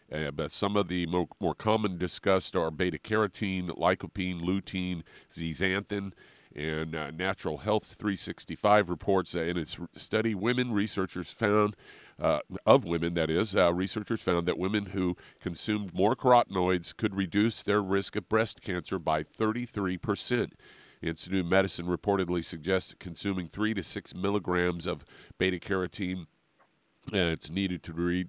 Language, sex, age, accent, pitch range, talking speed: English, male, 50-69, American, 85-100 Hz, 140 wpm